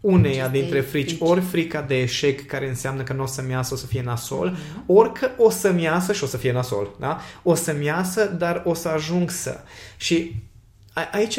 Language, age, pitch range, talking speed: Romanian, 20-39, 135-180 Hz, 205 wpm